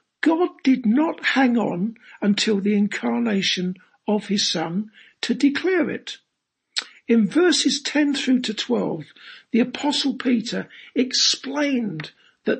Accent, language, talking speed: British, English, 120 wpm